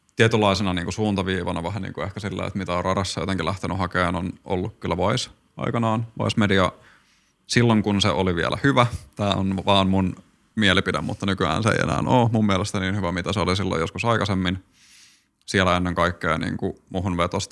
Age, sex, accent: 20-39, male, native